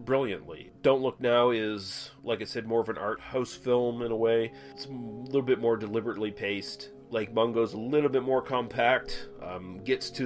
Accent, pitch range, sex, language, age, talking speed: American, 90-120 Hz, male, English, 30-49, 200 wpm